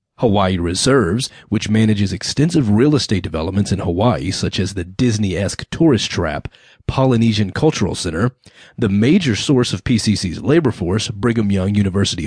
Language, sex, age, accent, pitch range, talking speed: English, male, 30-49, American, 95-130 Hz, 140 wpm